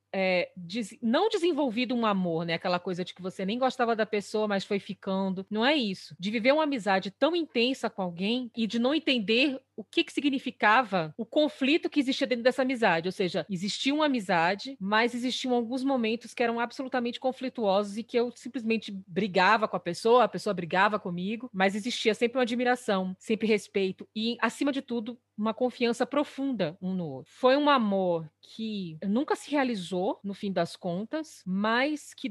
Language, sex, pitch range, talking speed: Portuguese, female, 195-255 Hz, 185 wpm